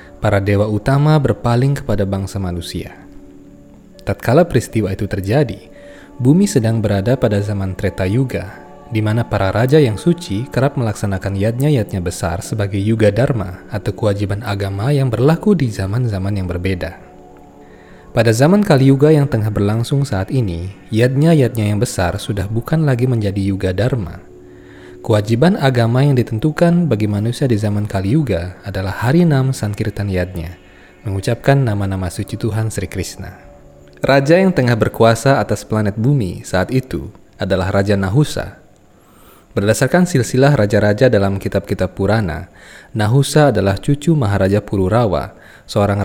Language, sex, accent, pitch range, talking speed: Indonesian, male, native, 95-130 Hz, 135 wpm